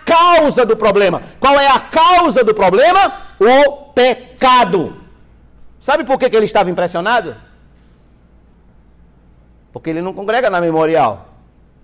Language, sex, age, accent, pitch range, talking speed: Portuguese, male, 60-79, Brazilian, 195-305 Hz, 120 wpm